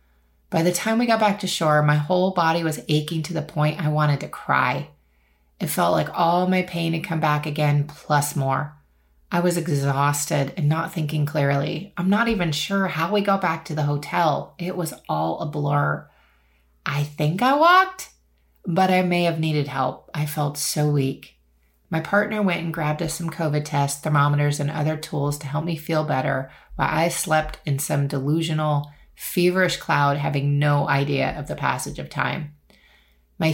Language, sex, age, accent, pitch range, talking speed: English, female, 30-49, American, 140-165 Hz, 185 wpm